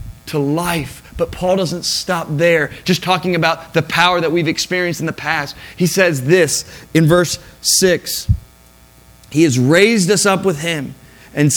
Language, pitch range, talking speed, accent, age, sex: English, 155-220 Hz, 165 wpm, American, 30-49, male